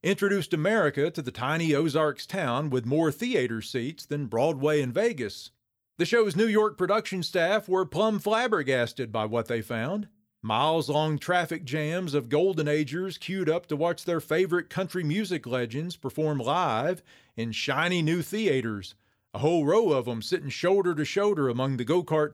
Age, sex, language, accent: 40-59, male, English, American